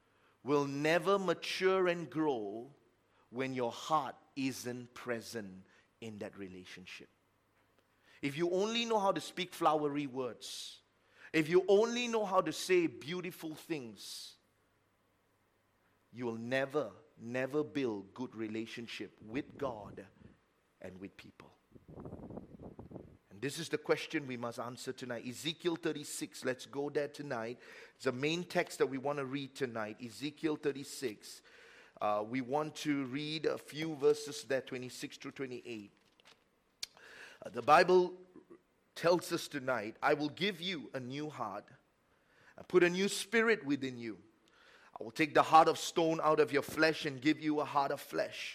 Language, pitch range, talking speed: English, 115-160 Hz, 145 wpm